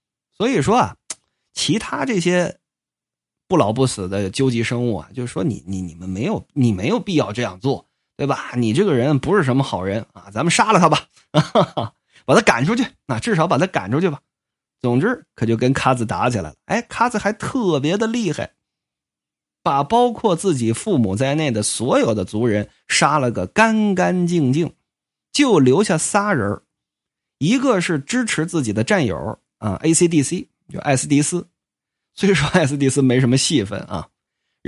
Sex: male